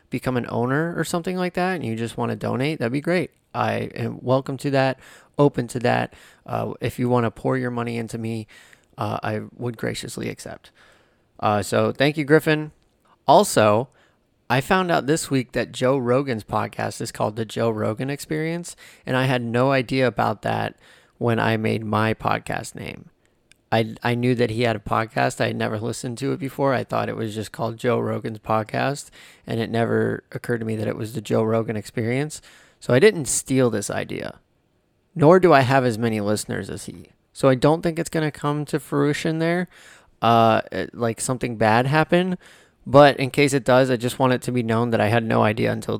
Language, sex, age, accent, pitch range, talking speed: English, male, 20-39, American, 115-145 Hz, 205 wpm